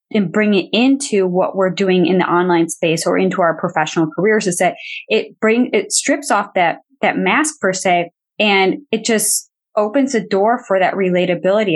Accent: American